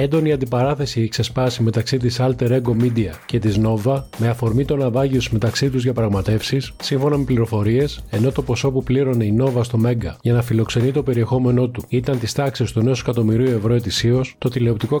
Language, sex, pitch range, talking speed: Greek, male, 115-135 Hz, 195 wpm